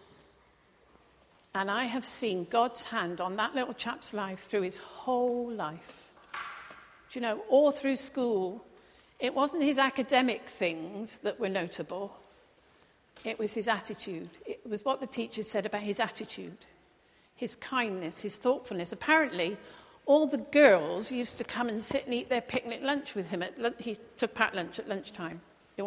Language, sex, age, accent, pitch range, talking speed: English, female, 50-69, British, 195-245 Hz, 160 wpm